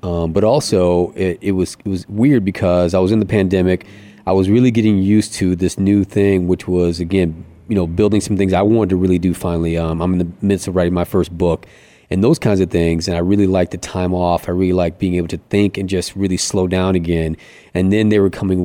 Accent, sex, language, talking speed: American, male, English, 250 wpm